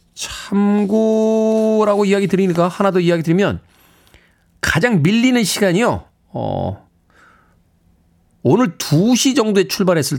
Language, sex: Korean, male